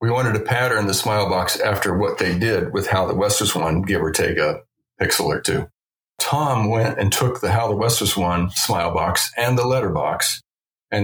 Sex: male